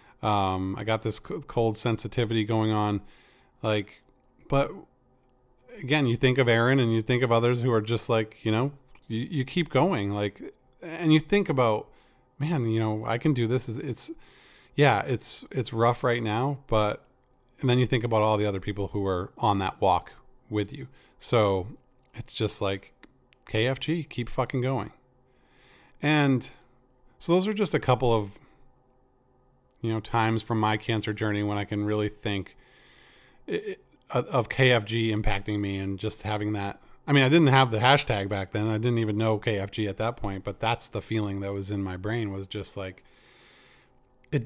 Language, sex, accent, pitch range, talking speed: English, male, American, 110-135 Hz, 180 wpm